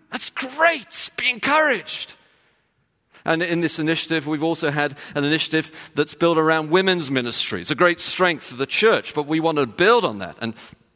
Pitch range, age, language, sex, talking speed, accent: 150-185 Hz, 40-59, English, male, 180 wpm, British